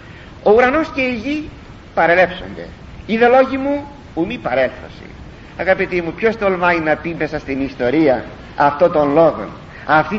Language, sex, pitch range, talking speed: Greek, male, 170-255 Hz, 140 wpm